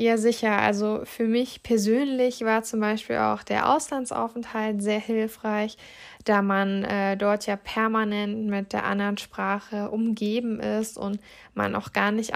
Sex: female